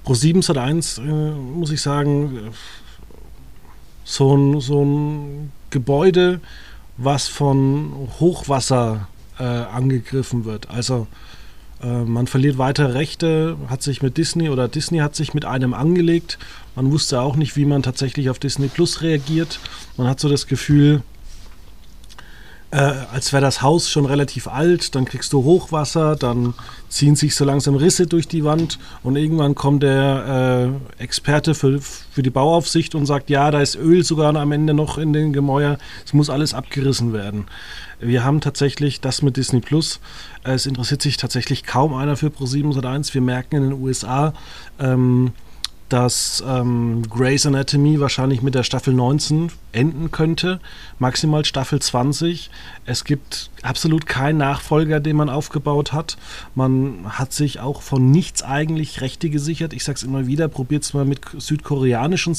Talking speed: 155 wpm